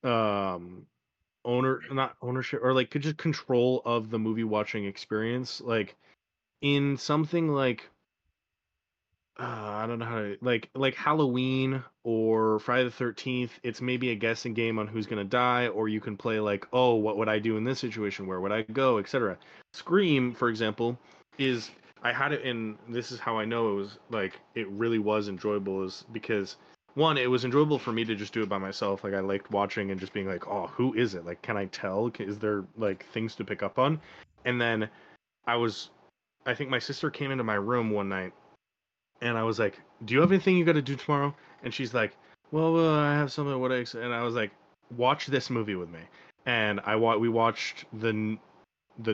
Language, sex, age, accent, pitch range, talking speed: English, male, 20-39, American, 105-130 Hz, 205 wpm